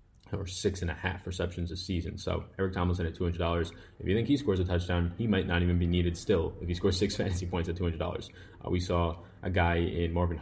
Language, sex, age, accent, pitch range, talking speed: English, male, 20-39, American, 85-100 Hz, 240 wpm